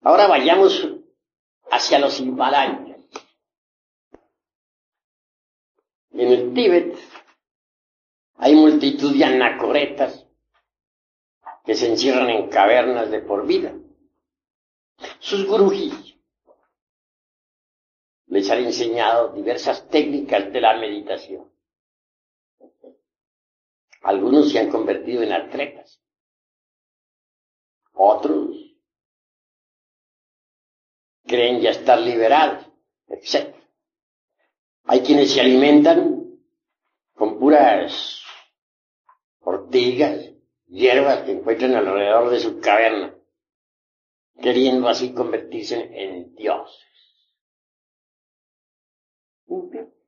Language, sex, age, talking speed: Spanish, male, 60-79, 75 wpm